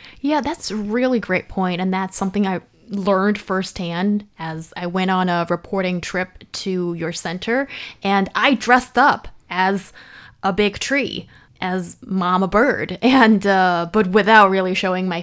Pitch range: 185-225 Hz